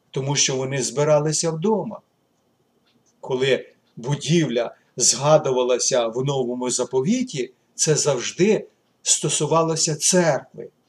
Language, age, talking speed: Ukrainian, 50-69, 85 wpm